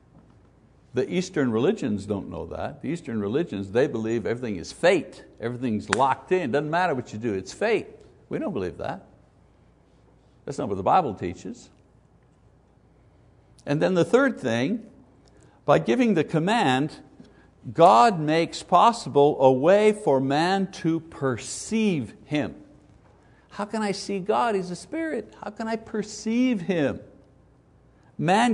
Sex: male